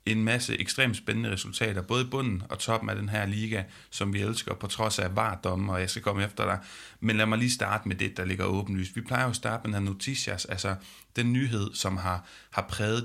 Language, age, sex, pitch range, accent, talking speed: Danish, 30-49, male, 95-115 Hz, native, 240 wpm